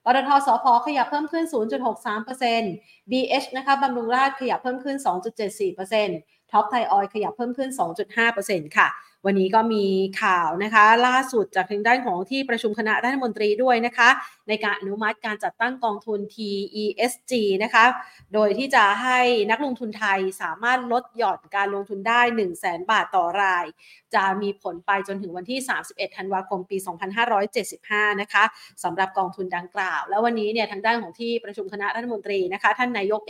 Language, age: Thai, 30-49